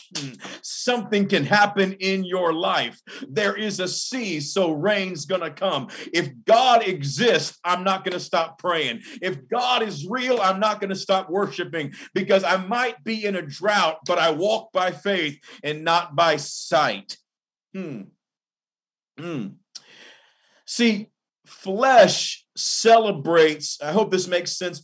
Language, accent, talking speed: English, American, 140 wpm